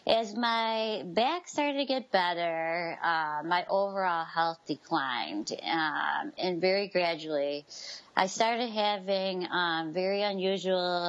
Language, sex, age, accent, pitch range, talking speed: English, female, 30-49, American, 165-200 Hz, 120 wpm